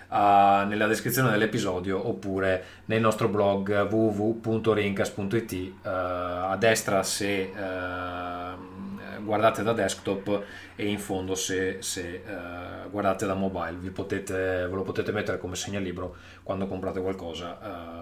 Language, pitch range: Italian, 95-115 Hz